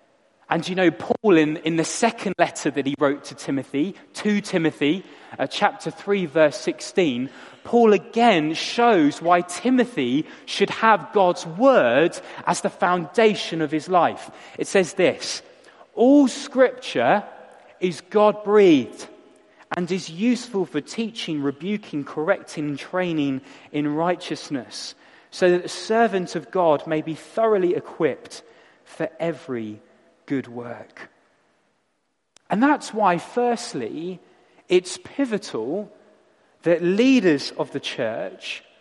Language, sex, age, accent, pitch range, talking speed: English, male, 30-49, British, 155-225 Hz, 120 wpm